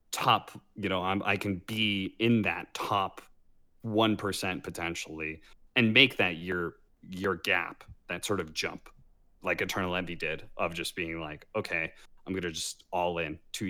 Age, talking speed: 30-49, 160 wpm